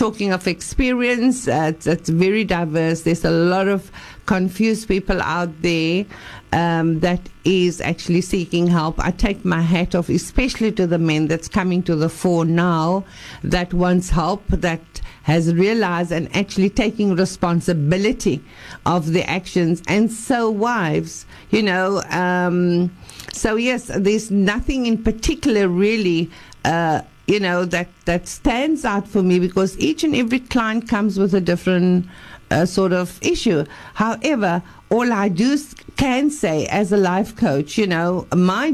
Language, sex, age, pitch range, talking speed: English, female, 50-69, 170-210 Hz, 150 wpm